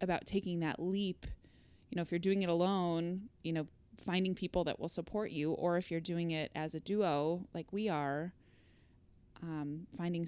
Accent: American